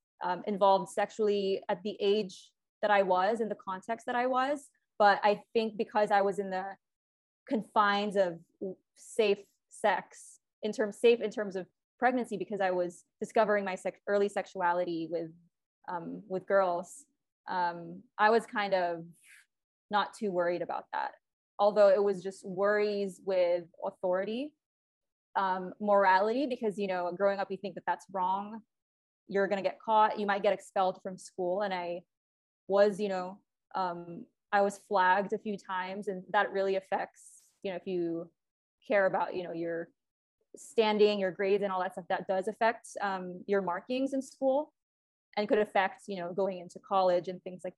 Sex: female